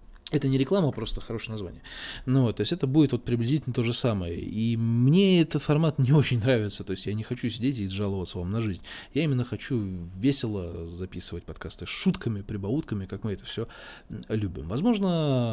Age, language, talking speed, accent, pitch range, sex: 20-39, Russian, 195 wpm, native, 100-130 Hz, male